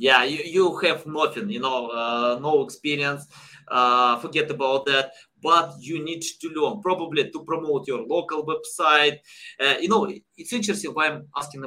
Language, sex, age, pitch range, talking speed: English, male, 20-39, 140-215 Hz, 170 wpm